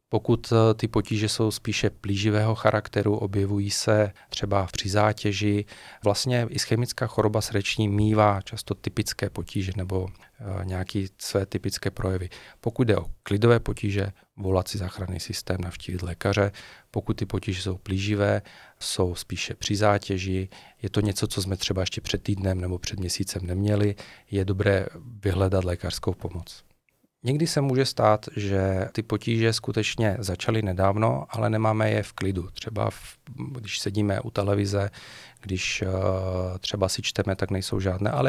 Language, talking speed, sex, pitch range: Czech, 145 wpm, male, 95-110 Hz